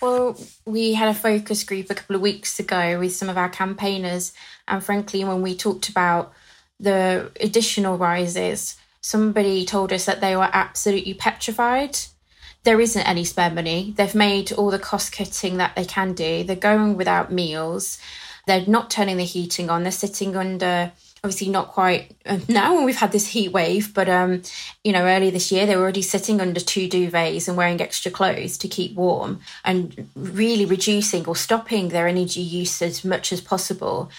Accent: British